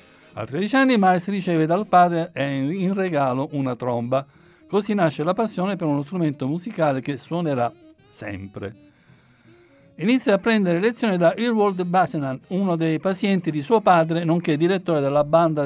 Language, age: Italian, 60-79